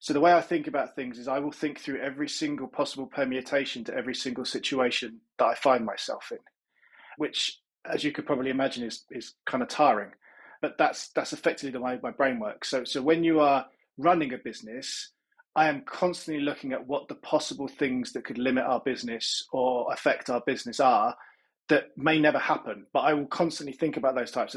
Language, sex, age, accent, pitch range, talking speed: English, male, 20-39, British, 125-155 Hz, 205 wpm